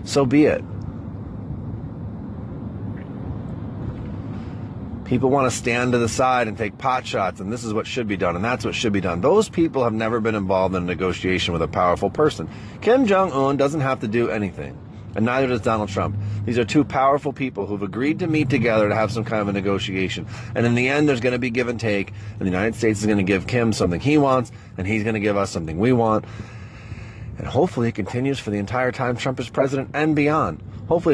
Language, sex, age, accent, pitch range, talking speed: English, male, 30-49, American, 105-130 Hz, 225 wpm